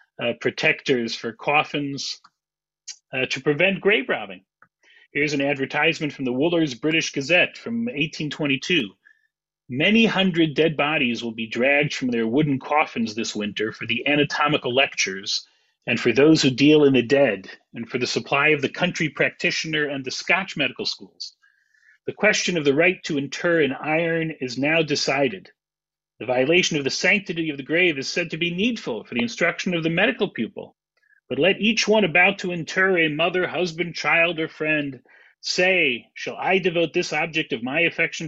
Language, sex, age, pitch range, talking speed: English, male, 40-59, 140-180 Hz, 175 wpm